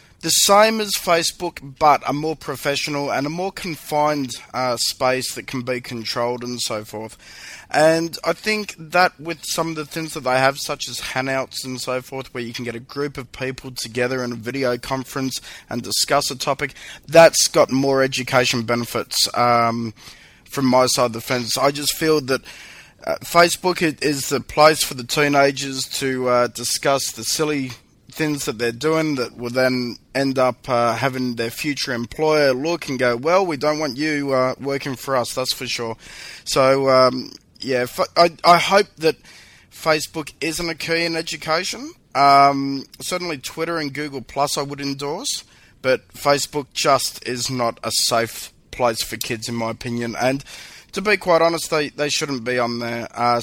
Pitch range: 120-155 Hz